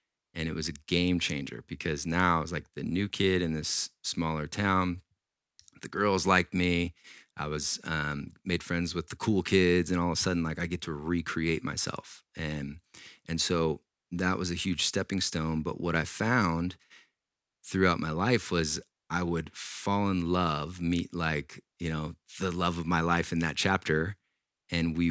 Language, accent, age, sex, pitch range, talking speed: English, American, 30-49, male, 80-90 Hz, 185 wpm